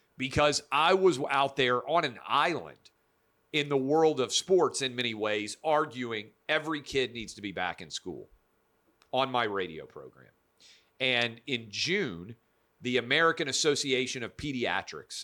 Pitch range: 110-140 Hz